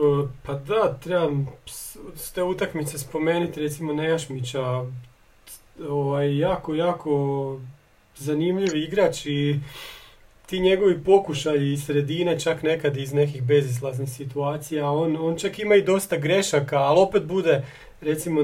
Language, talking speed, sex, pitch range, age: Croatian, 115 wpm, male, 140-180 Hz, 40-59